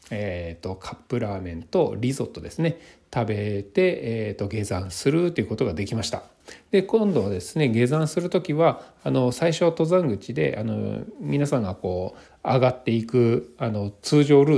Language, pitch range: Japanese, 105-165 Hz